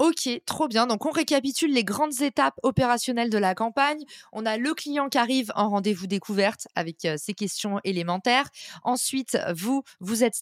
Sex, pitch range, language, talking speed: female, 195-245 Hz, French, 180 wpm